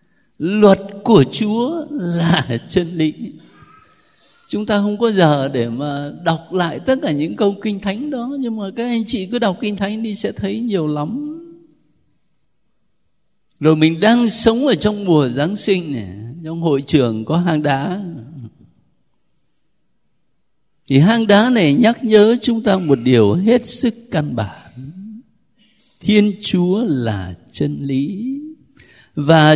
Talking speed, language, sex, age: 145 wpm, Vietnamese, male, 60-79